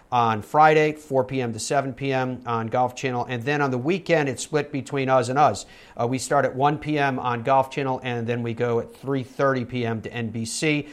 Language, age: English, 40-59